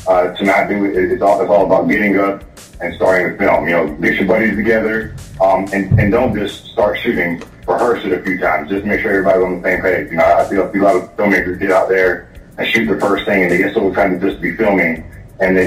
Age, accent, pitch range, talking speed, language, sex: 40-59, American, 90-100 Hz, 265 wpm, English, male